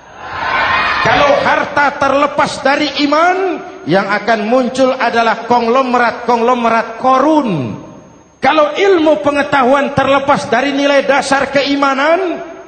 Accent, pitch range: native, 215-285 Hz